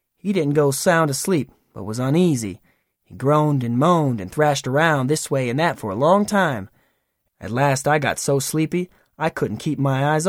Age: 20-39